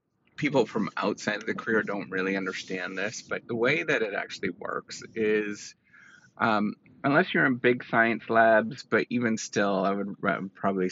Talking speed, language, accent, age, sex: 170 wpm, English, American, 30-49, male